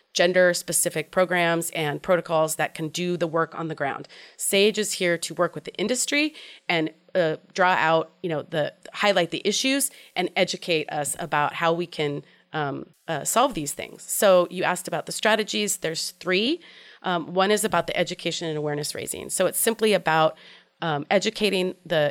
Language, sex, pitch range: English, female, 160-195 Hz